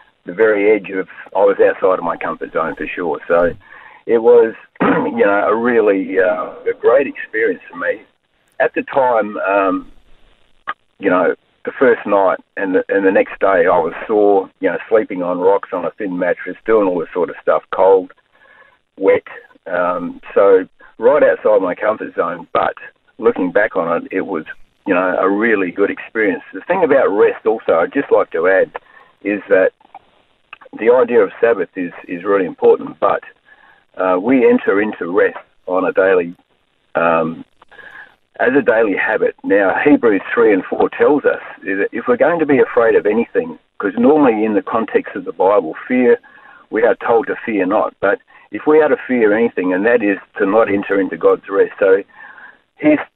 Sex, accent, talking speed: male, Australian, 185 wpm